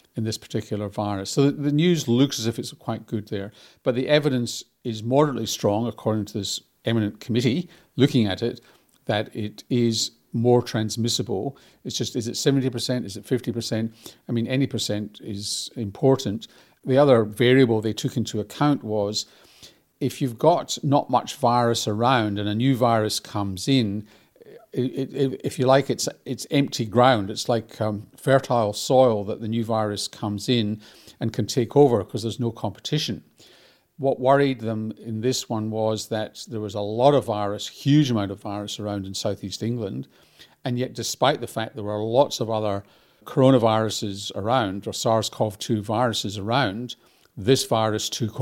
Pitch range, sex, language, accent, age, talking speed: 105-130 Hz, male, English, British, 50-69, 170 wpm